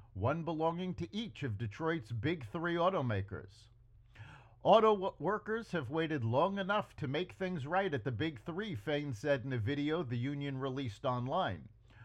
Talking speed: 160 wpm